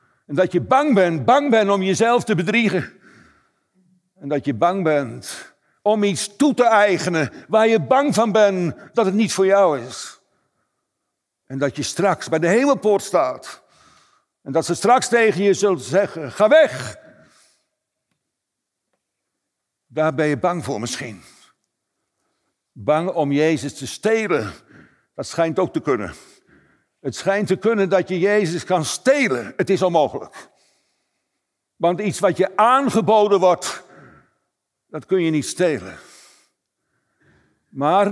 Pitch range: 160-220 Hz